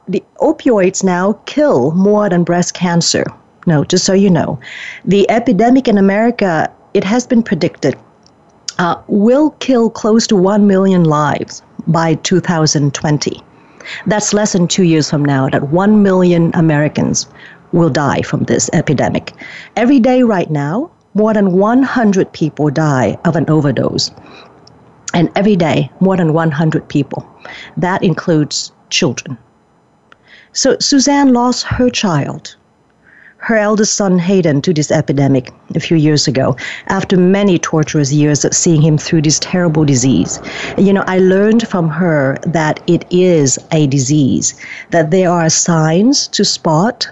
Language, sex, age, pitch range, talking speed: English, female, 40-59, 155-205 Hz, 145 wpm